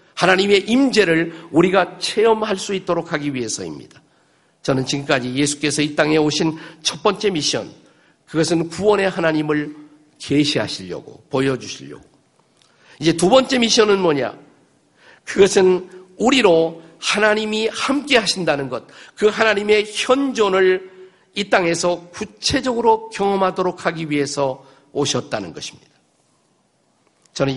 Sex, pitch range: male, 155-205 Hz